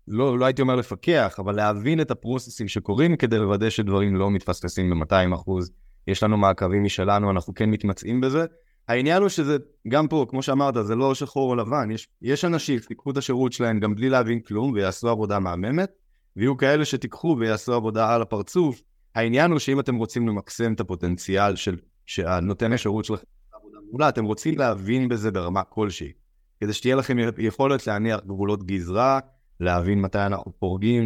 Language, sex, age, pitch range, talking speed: Hebrew, male, 20-39, 95-125 Hz, 145 wpm